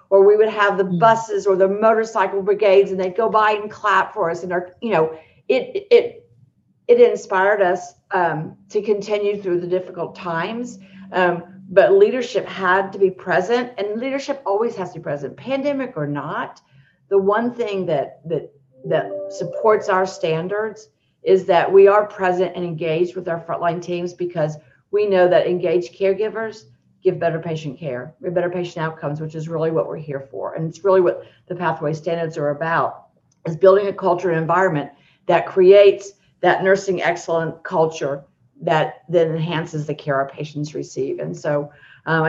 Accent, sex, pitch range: American, female, 160-200 Hz